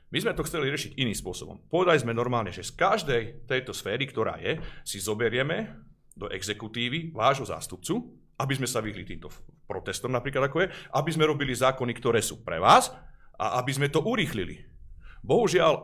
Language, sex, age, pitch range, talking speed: Slovak, male, 40-59, 95-130 Hz, 170 wpm